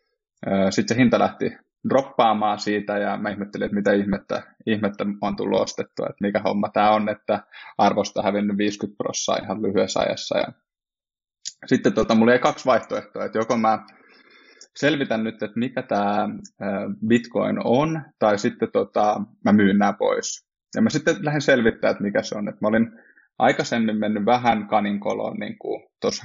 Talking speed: 160 wpm